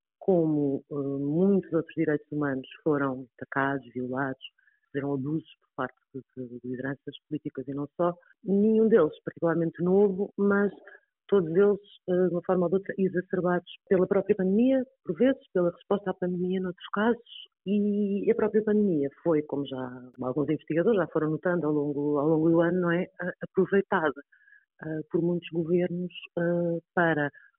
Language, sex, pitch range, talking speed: Portuguese, female, 130-180 Hz, 150 wpm